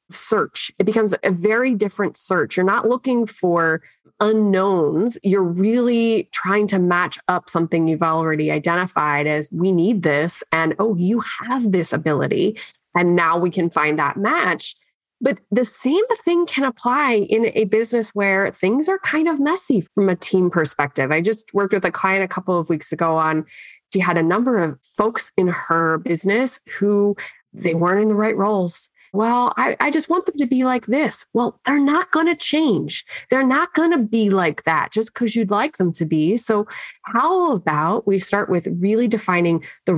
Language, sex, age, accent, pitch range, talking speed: English, female, 20-39, American, 170-225 Hz, 190 wpm